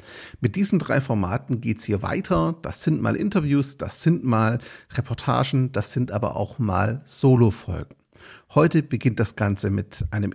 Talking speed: 155 wpm